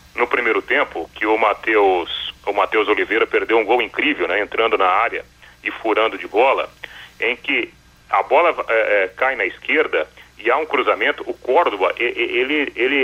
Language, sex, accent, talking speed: Portuguese, male, Brazilian, 165 wpm